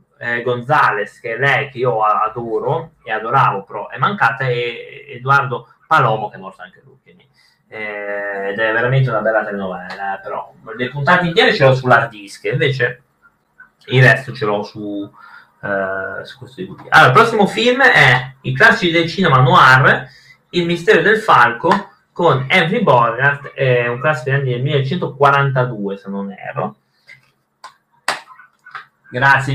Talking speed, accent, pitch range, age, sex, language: 145 wpm, native, 125-165 Hz, 30-49, male, Italian